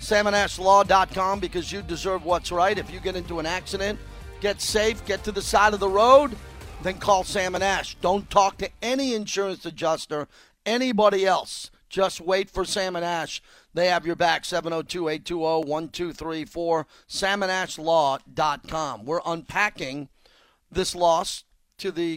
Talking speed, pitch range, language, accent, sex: 130 wpm, 165-195 Hz, English, American, male